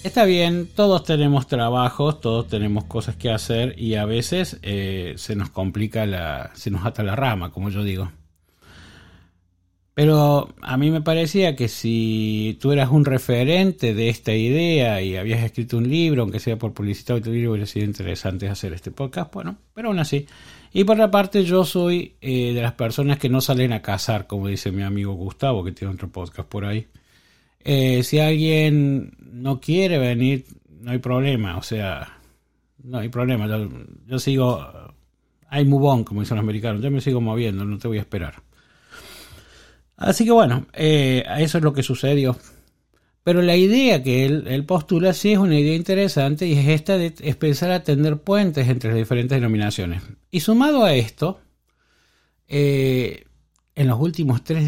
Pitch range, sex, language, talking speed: 105-150 Hz, male, Spanish, 180 wpm